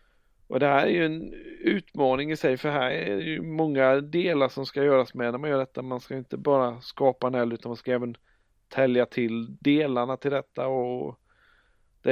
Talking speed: 210 wpm